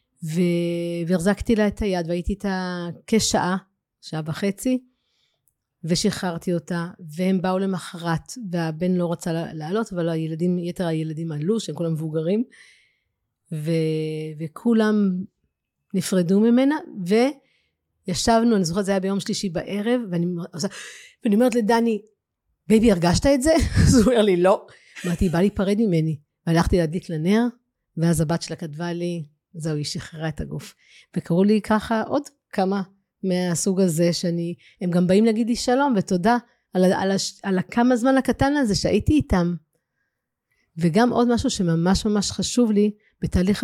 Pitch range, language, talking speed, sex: 170-215 Hz, Hebrew, 135 wpm, female